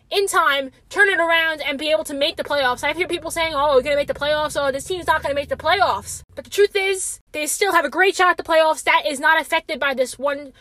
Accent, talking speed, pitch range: American, 295 wpm, 295-370 Hz